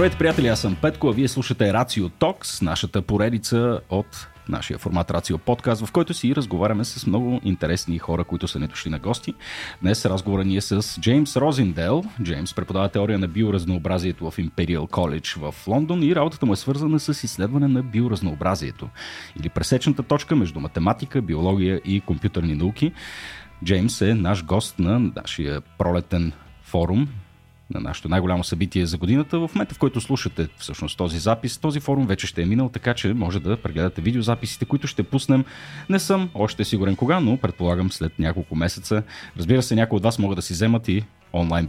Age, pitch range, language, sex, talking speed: 30-49, 85-125 Hz, Bulgarian, male, 175 wpm